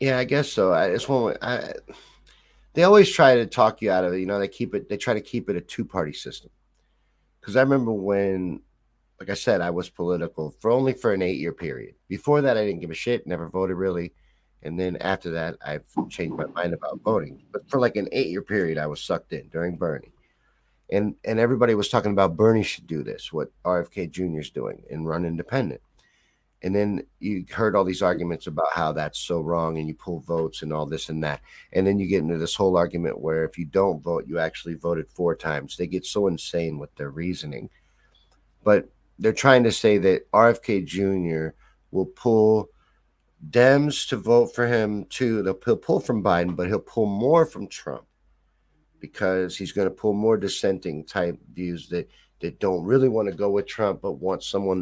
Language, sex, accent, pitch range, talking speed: English, male, American, 85-105 Hz, 205 wpm